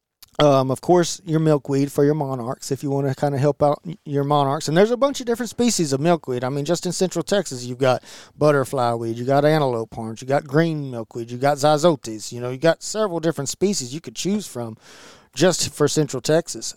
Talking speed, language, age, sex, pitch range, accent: 225 wpm, English, 40-59, male, 130-165 Hz, American